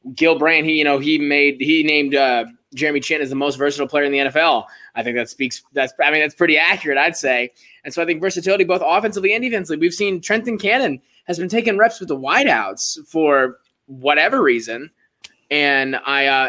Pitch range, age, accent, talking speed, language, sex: 135-155 Hz, 20-39, American, 210 wpm, English, male